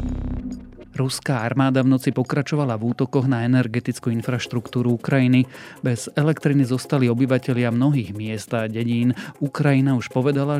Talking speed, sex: 125 wpm, male